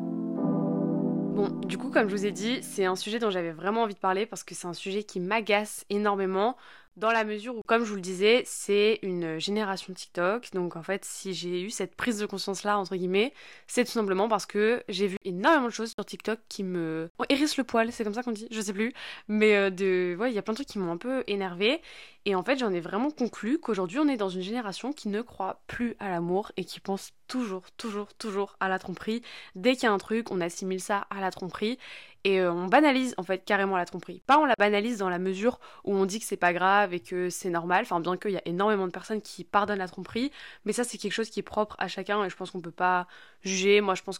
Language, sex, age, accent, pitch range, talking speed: French, female, 20-39, French, 185-220 Hz, 255 wpm